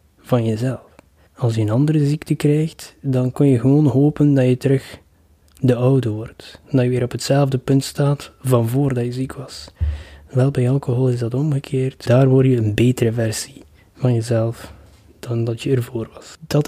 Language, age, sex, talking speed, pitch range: Dutch, 20-39, male, 185 wpm, 120-140 Hz